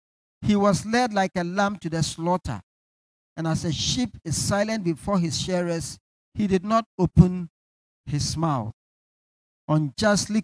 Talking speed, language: 145 wpm, English